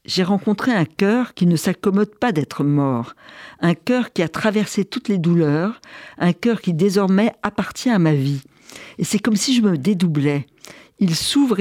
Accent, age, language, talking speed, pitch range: French, 50-69, French, 185 wpm, 160-215 Hz